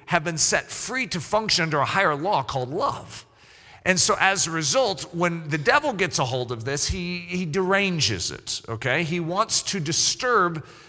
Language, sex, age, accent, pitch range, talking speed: English, male, 40-59, American, 135-190 Hz, 185 wpm